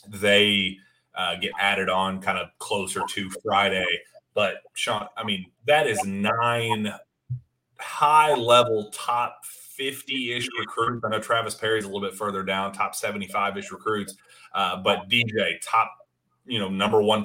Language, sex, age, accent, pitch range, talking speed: English, male, 30-49, American, 100-115 Hz, 145 wpm